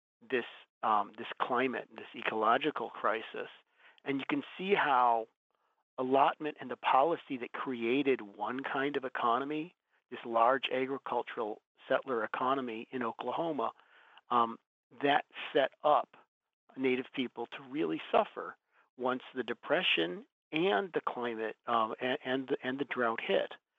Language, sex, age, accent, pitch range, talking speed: English, male, 40-59, American, 115-135 Hz, 130 wpm